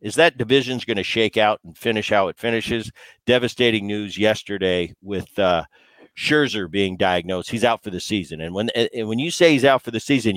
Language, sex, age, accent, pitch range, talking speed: English, male, 50-69, American, 100-125 Hz, 210 wpm